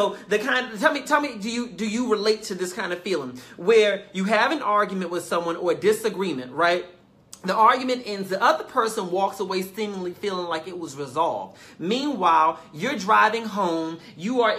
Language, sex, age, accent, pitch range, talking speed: English, male, 40-59, American, 180-235 Hz, 200 wpm